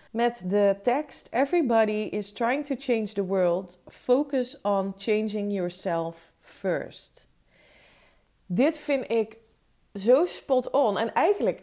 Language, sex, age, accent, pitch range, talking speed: Dutch, female, 30-49, Dutch, 185-230 Hz, 120 wpm